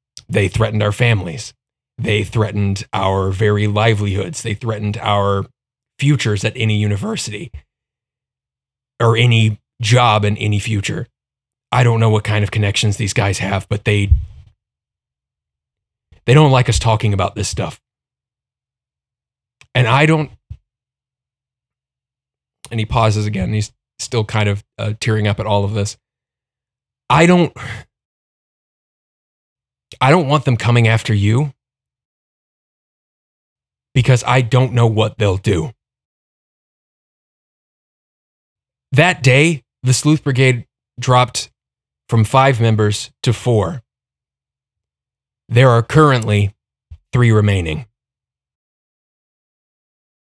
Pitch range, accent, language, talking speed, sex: 105-130 Hz, American, English, 110 wpm, male